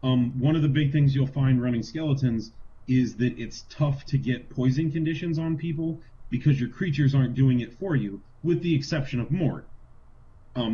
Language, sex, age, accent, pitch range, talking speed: English, male, 30-49, American, 120-145 Hz, 190 wpm